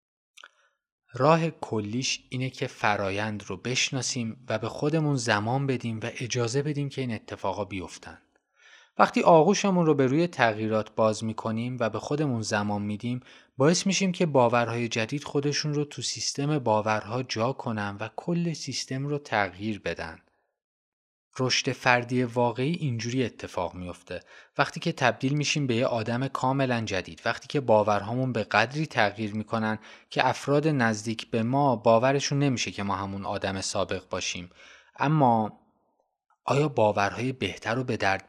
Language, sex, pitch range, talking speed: Persian, male, 110-140 Hz, 145 wpm